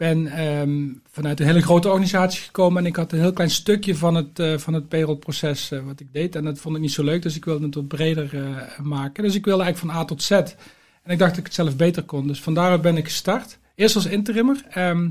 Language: Dutch